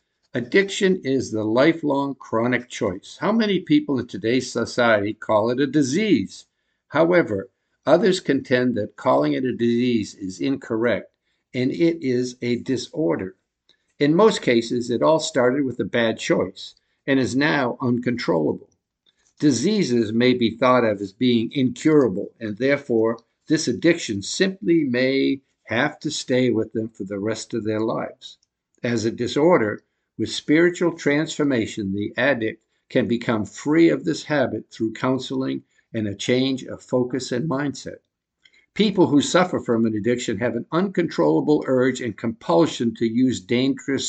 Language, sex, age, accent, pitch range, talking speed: English, male, 60-79, American, 115-145 Hz, 145 wpm